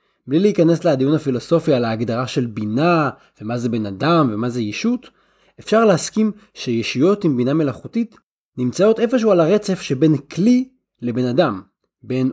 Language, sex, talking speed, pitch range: Hebrew, male, 145 wpm, 125-185 Hz